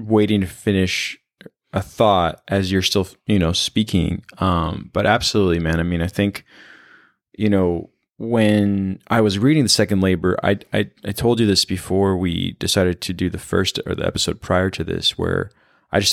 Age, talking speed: 20-39, 185 wpm